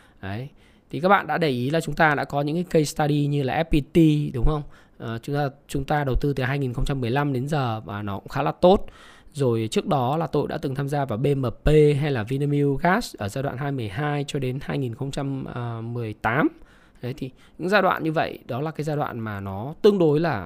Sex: male